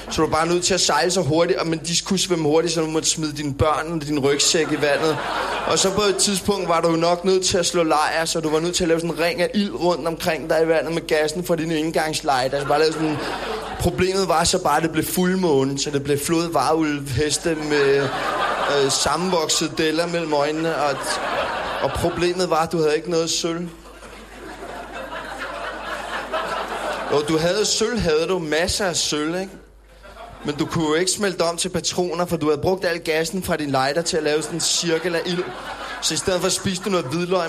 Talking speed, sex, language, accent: 220 wpm, male, Danish, native